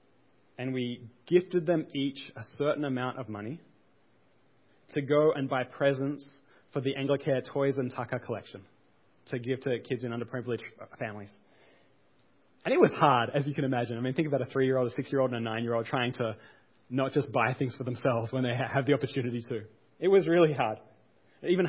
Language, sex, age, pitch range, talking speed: English, male, 20-39, 120-145 Hz, 185 wpm